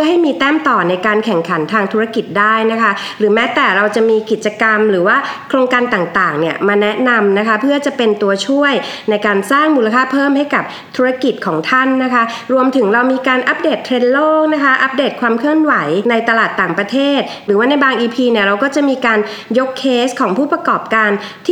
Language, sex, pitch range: Thai, female, 215-275 Hz